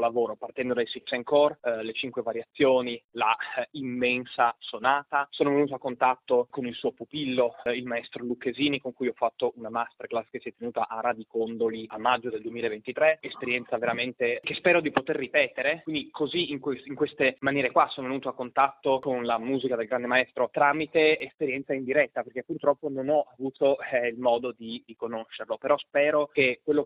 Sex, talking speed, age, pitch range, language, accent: male, 190 wpm, 20-39, 120-140 Hz, Italian, native